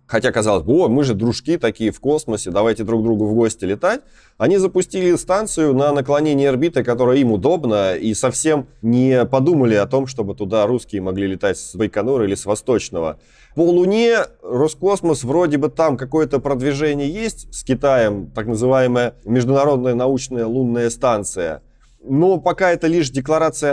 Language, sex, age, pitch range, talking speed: Russian, male, 20-39, 115-150 Hz, 155 wpm